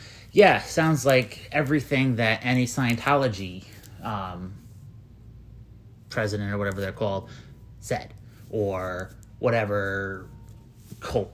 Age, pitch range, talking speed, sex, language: 30-49, 110-145 Hz, 90 wpm, male, English